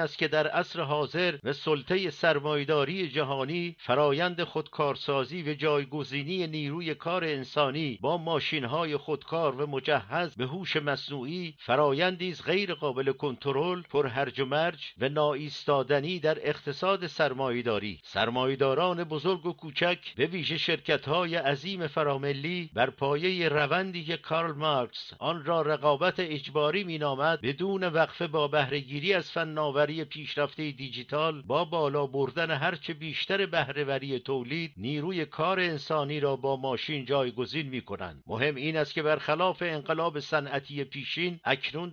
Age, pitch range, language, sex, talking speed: 50-69, 140-165 Hz, English, male, 130 wpm